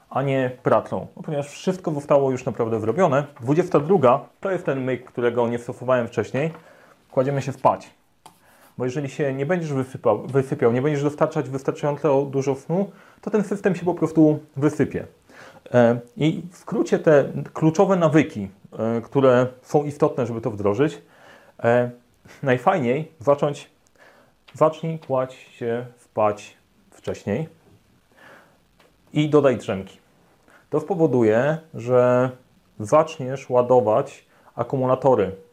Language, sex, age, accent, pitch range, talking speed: Polish, male, 30-49, native, 120-155 Hz, 115 wpm